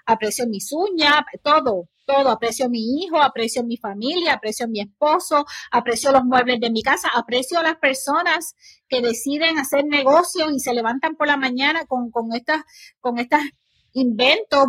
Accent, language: American, Spanish